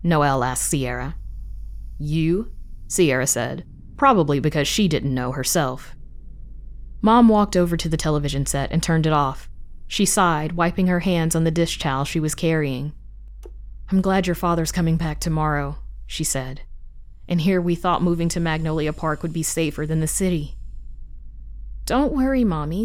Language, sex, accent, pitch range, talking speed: English, female, American, 130-185 Hz, 160 wpm